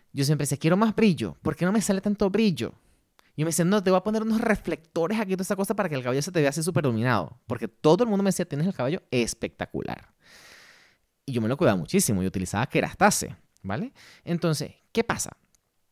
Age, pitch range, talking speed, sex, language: 30-49, 135-205 Hz, 230 wpm, male, Spanish